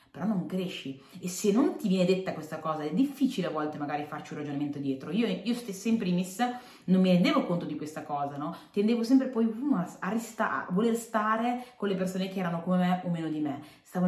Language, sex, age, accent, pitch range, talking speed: Italian, female, 30-49, native, 155-205 Hz, 225 wpm